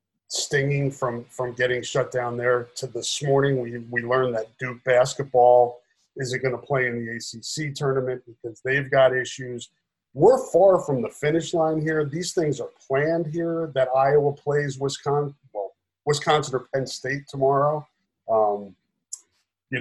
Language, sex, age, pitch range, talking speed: English, male, 40-59, 125-150 Hz, 160 wpm